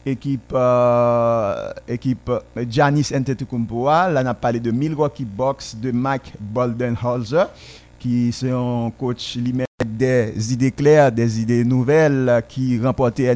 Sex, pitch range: male, 120-140 Hz